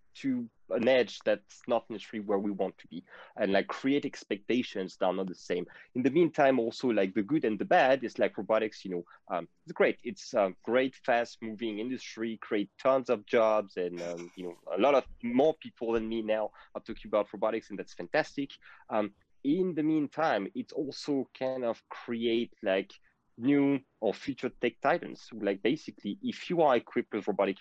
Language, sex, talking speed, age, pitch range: English, male, 195 wpm, 30-49, 100-130 Hz